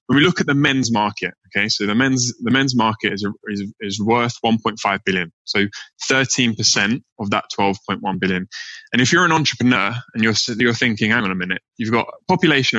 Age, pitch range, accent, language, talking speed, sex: 20-39, 105-125 Hz, British, English, 205 wpm, male